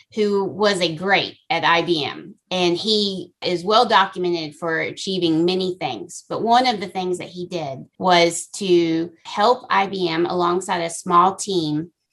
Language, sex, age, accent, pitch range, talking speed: English, female, 30-49, American, 170-200 Hz, 150 wpm